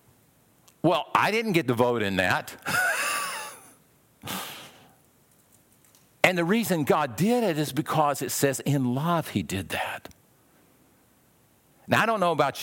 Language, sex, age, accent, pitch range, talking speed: English, male, 50-69, American, 110-150 Hz, 135 wpm